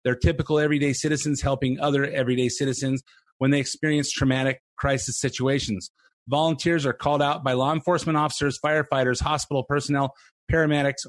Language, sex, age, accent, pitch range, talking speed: English, male, 30-49, American, 130-150 Hz, 145 wpm